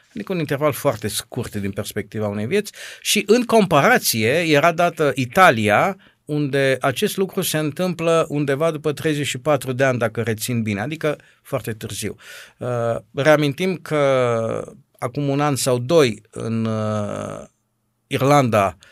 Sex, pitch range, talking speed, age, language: male, 110-145 Hz, 125 wpm, 50-69, Romanian